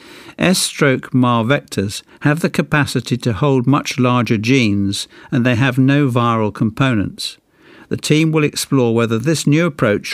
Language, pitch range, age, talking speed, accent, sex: English, 115-145 Hz, 60-79, 150 wpm, British, male